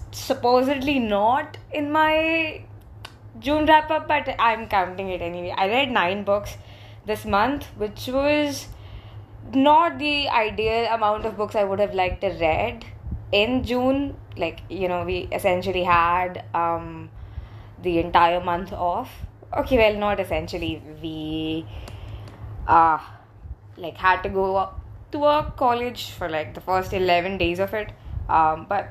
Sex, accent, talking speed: female, Indian, 140 wpm